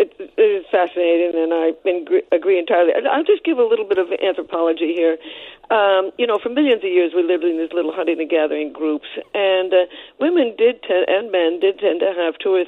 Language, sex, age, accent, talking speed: English, female, 60-79, American, 210 wpm